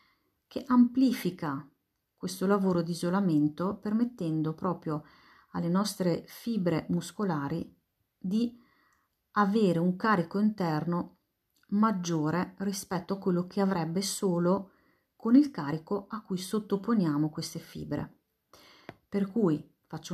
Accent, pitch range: native, 165-205 Hz